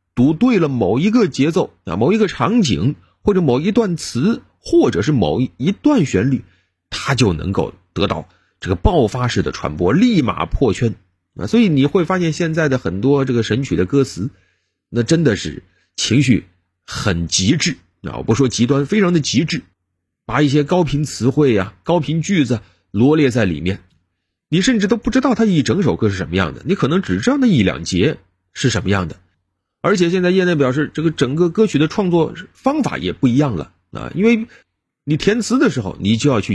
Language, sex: Chinese, male